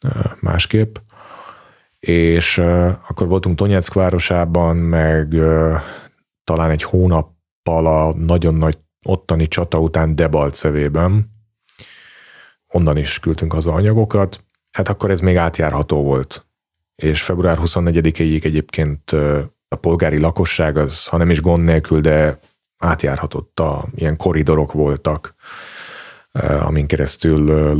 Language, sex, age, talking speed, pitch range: Hungarian, male, 30-49, 115 wpm, 80-90 Hz